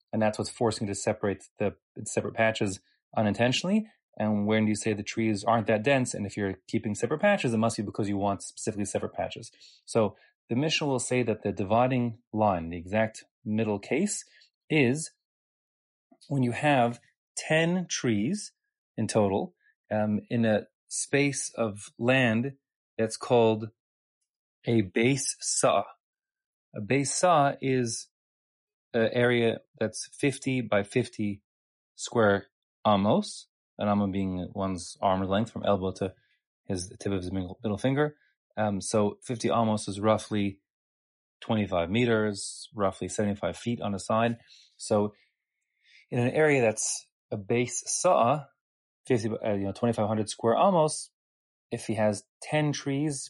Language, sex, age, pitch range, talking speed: English, male, 30-49, 105-130 Hz, 145 wpm